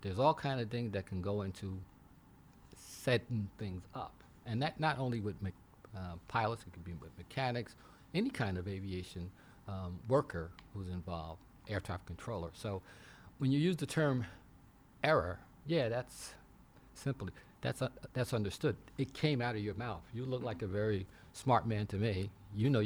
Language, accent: English, American